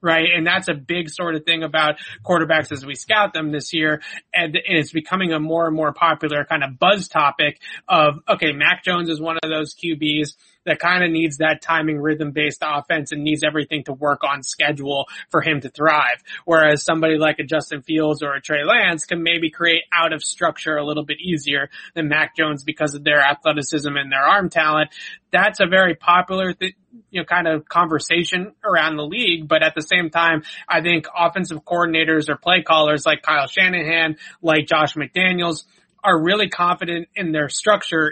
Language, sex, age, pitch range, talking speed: English, male, 30-49, 150-170 Hz, 195 wpm